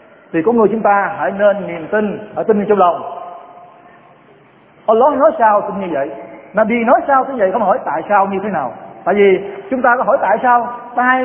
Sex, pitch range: male, 180-260 Hz